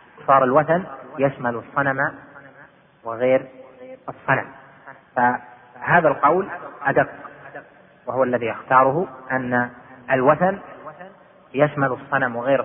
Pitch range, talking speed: 130-160 Hz, 80 wpm